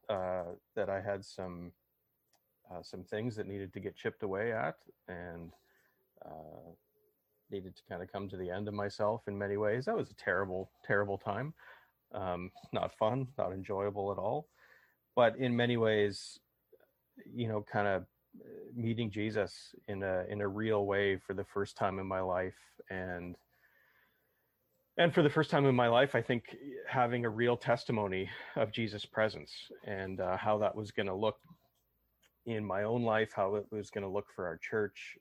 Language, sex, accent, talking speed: English, male, American, 180 wpm